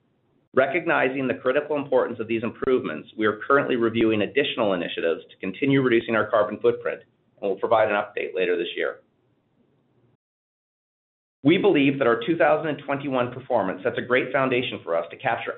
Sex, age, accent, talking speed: male, 40-59, American, 160 wpm